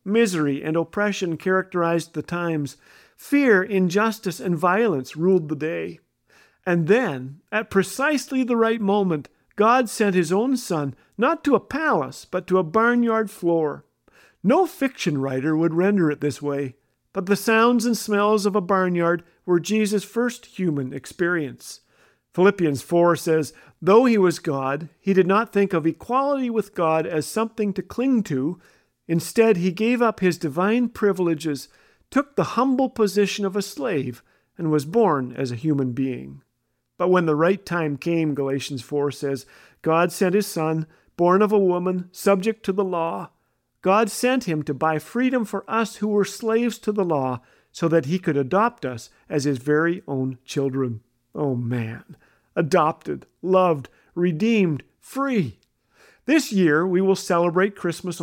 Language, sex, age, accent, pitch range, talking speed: English, male, 50-69, American, 155-210 Hz, 160 wpm